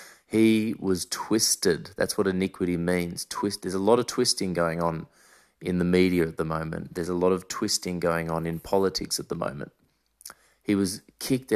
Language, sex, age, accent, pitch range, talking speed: English, male, 30-49, Australian, 90-105 Hz, 185 wpm